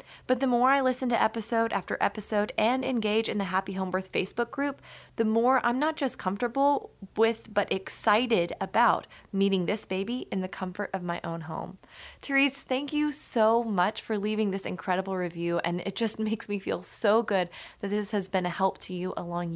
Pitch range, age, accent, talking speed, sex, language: 185-240 Hz, 20-39, American, 200 wpm, female, English